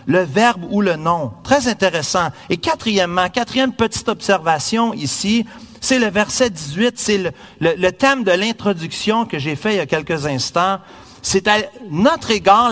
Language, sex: French, male